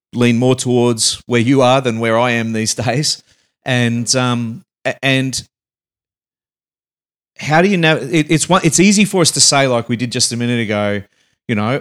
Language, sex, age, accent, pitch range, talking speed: English, male, 40-59, Australian, 120-145 Hz, 195 wpm